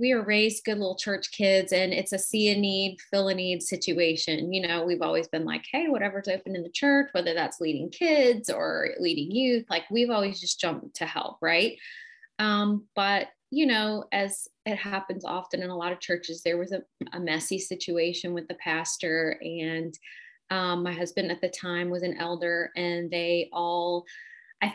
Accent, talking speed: American, 195 wpm